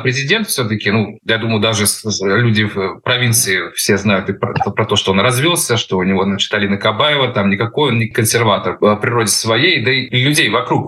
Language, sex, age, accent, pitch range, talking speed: Russian, male, 20-39, native, 105-130 Hz, 195 wpm